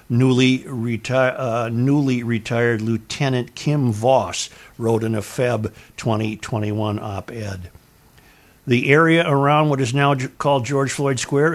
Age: 50-69